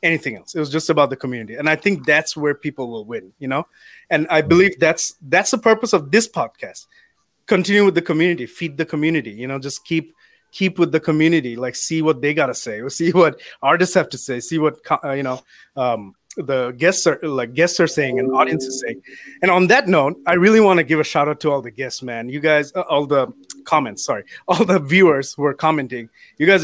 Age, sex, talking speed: 30-49, male, 235 wpm